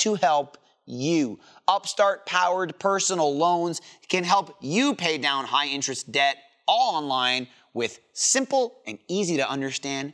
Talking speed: 135 wpm